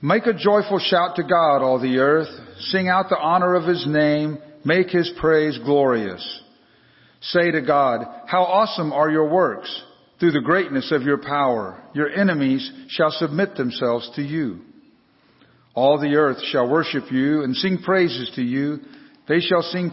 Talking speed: 165 wpm